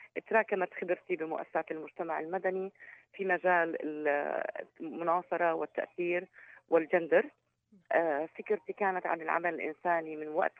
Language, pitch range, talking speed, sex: Arabic, 165-200 Hz, 95 wpm, female